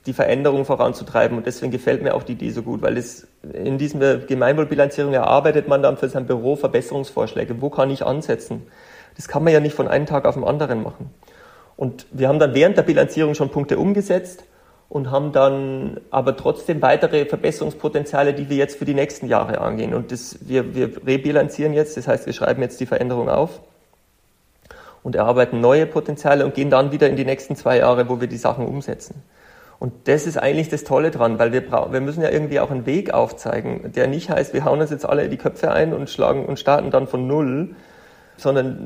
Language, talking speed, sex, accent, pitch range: German, 205 wpm, male, German, 135-150 Hz